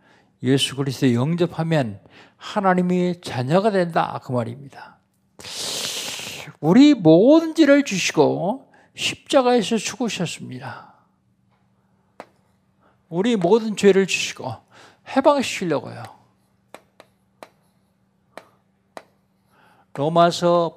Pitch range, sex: 140-215 Hz, male